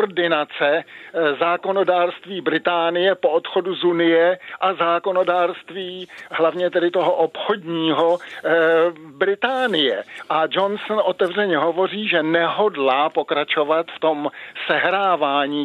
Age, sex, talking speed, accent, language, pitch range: 50-69, male, 90 wpm, native, Czech, 160-185 Hz